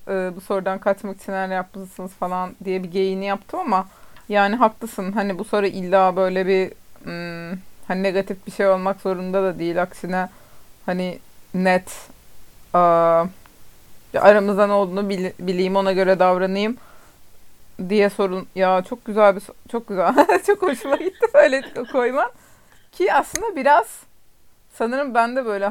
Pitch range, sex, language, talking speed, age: 185-215 Hz, female, Turkish, 145 wpm, 30-49